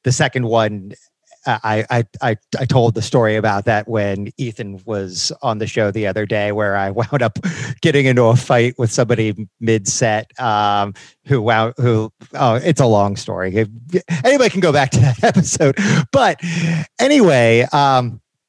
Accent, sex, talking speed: American, male, 160 wpm